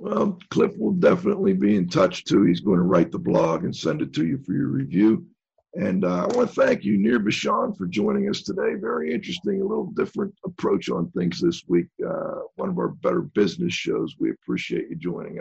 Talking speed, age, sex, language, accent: 220 wpm, 50-69, male, English, American